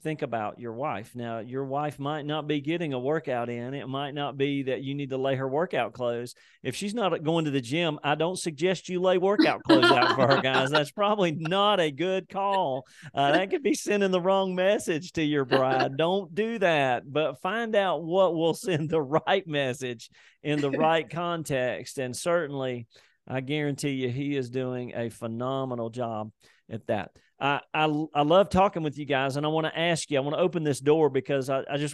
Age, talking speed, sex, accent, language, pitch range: 40-59, 215 wpm, male, American, English, 130-165 Hz